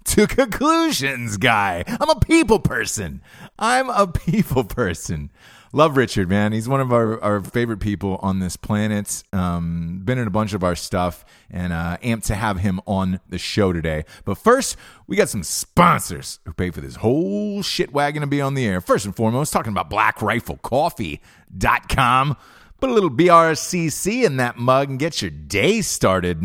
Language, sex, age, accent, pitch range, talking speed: English, male, 30-49, American, 95-140 Hz, 175 wpm